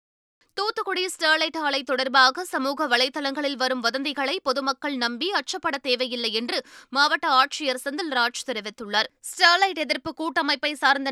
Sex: female